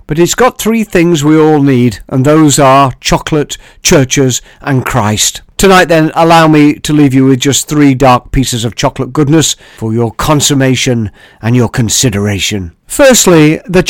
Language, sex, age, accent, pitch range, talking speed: English, male, 50-69, British, 135-175 Hz, 165 wpm